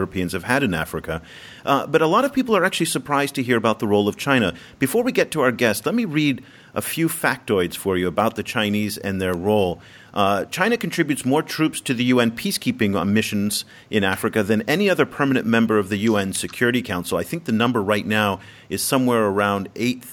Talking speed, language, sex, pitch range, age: 220 wpm, English, male, 105-140 Hz, 40-59